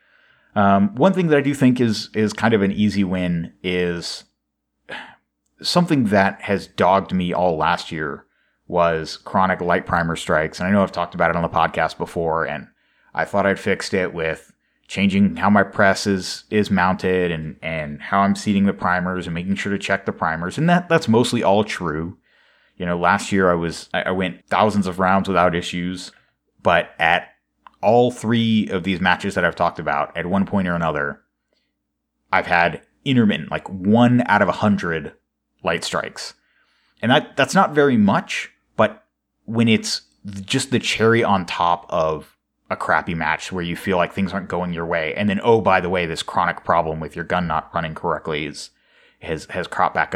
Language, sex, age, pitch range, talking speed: English, male, 30-49, 85-105 Hz, 190 wpm